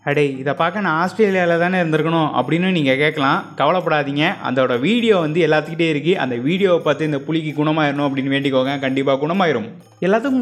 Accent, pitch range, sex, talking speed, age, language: native, 140-185 Hz, male, 155 wpm, 20-39, Tamil